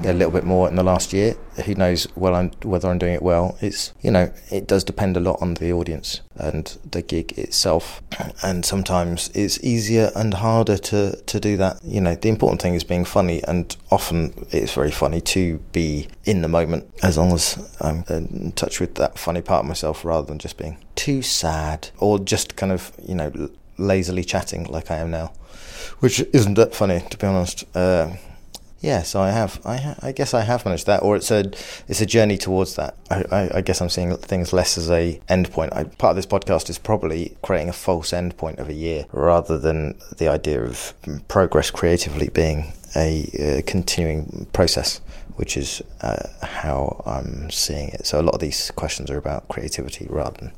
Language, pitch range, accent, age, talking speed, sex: English, 80-95 Hz, British, 20-39, 205 wpm, male